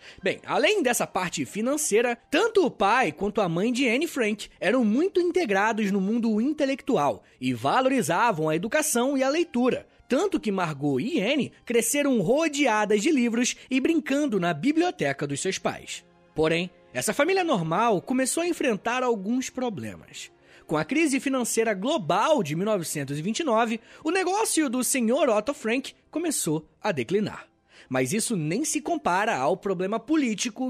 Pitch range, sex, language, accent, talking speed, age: 175-275 Hz, male, Portuguese, Brazilian, 150 wpm, 20-39